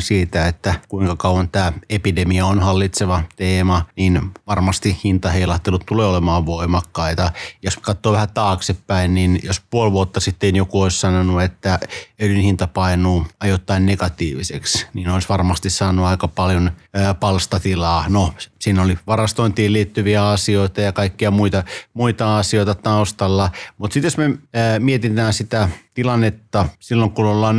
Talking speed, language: 135 wpm, Finnish